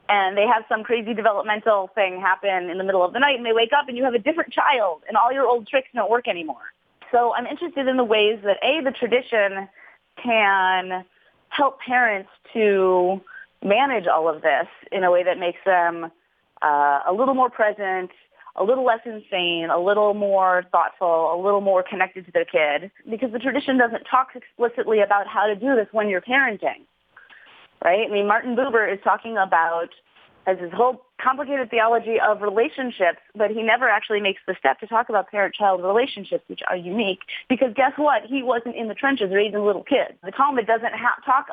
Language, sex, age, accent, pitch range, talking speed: English, female, 30-49, American, 190-245 Hz, 195 wpm